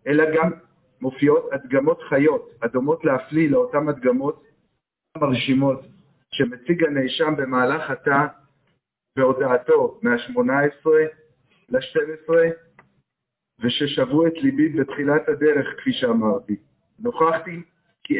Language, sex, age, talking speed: Hebrew, male, 50-69, 85 wpm